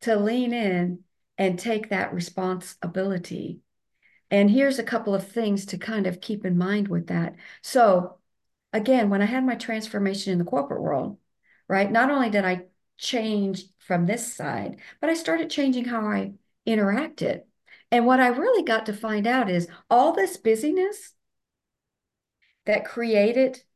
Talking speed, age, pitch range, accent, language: 155 wpm, 50-69, 195-255 Hz, American, English